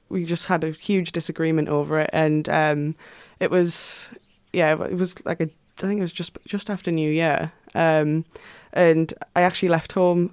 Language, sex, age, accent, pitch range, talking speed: English, female, 20-39, British, 155-180 Hz, 185 wpm